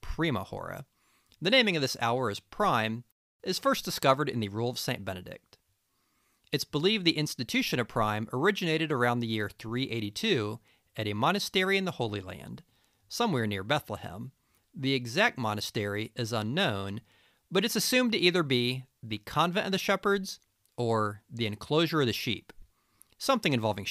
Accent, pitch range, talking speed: American, 110-160 Hz, 160 wpm